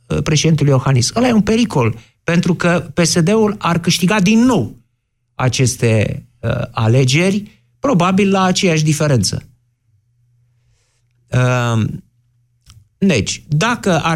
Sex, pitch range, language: male, 120-200 Hz, Romanian